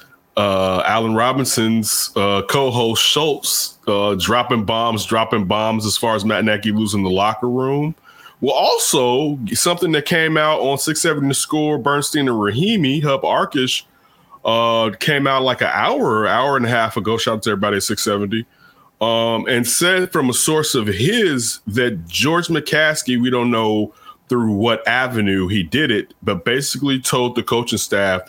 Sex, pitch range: male, 105-135 Hz